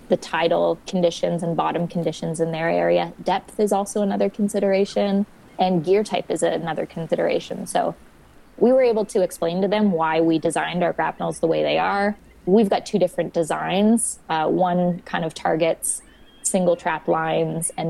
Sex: female